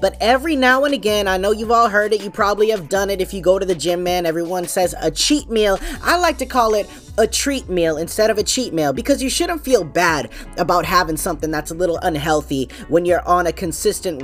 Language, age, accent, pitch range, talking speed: English, 20-39, American, 170-230 Hz, 245 wpm